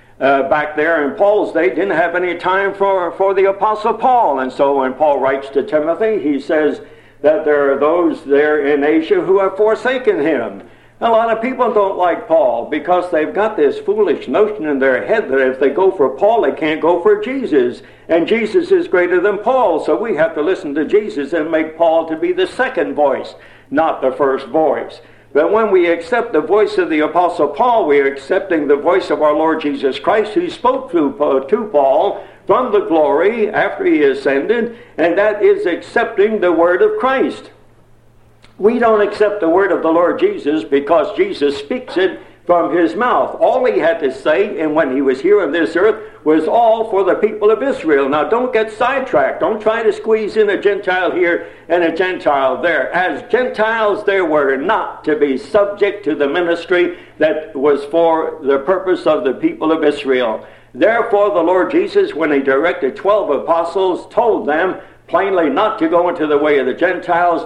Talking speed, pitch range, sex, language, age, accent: 195 wpm, 155-245 Hz, male, English, 60-79, American